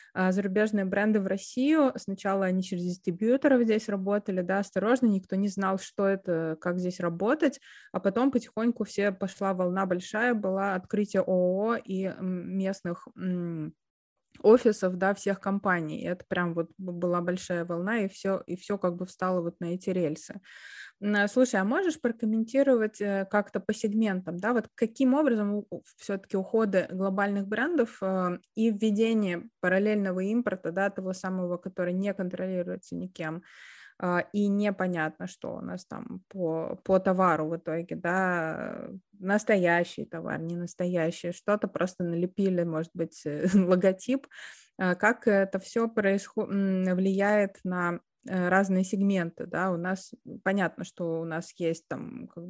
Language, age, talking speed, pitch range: Russian, 20-39, 135 wpm, 180-215 Hz